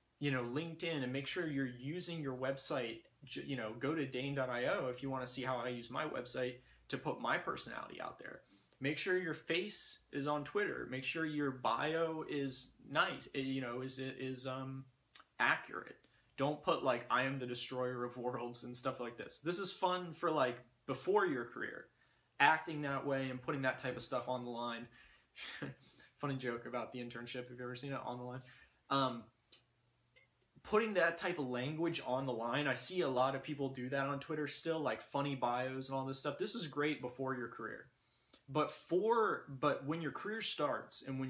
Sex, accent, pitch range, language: male, American, 125-150 Hz, English